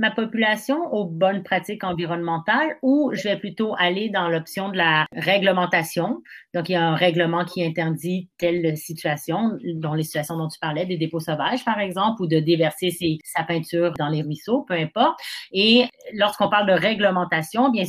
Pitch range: 165-205 Hz